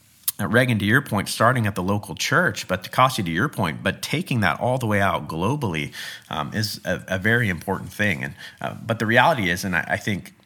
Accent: American